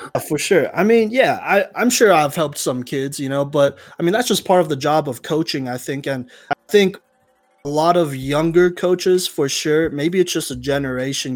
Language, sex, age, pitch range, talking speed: English, male, 20-39, 130-155 Hz, 220 wpm